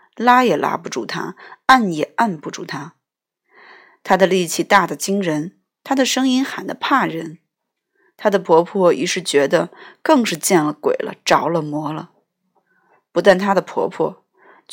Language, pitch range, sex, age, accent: Chinese, 175-270 Hz, female, 20-39, native